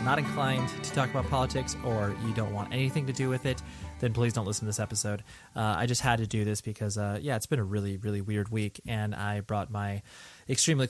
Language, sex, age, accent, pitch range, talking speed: English, male, 20-39, American, 105-120 Hz, 240 wpm